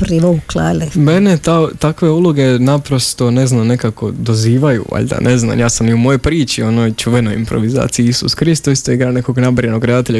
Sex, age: male, 20-39